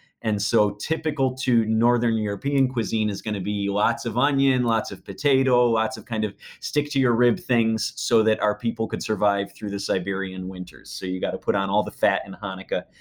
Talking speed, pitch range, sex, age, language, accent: 215 wpm, 100-120 Hz, male, 30-49, English, American